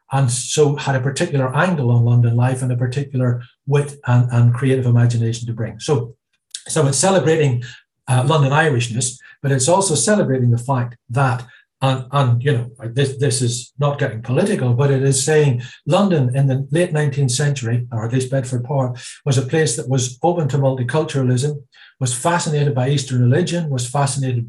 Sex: male